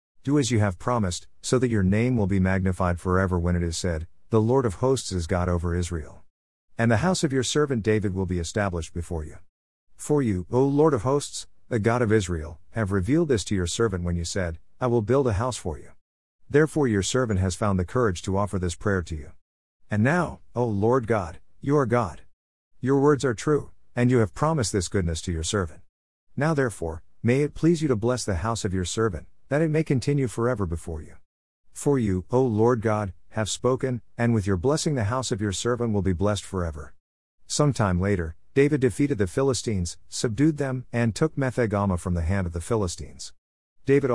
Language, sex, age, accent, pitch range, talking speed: English, male, 50-69, American, 90-125 Hz, 210 wpm